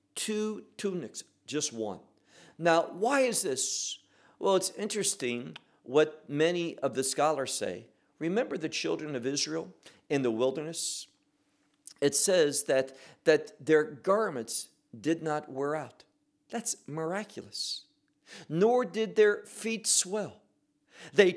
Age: 50-69